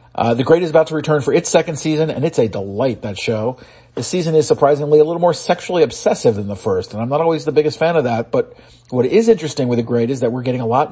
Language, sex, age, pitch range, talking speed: English, male, 40-59, 115-150 Hz, 280 wpm